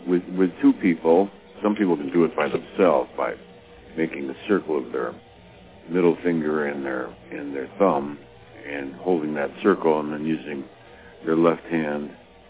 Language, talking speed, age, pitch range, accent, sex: English, 165 wpm, 60-79, 70-90 Hz, American, male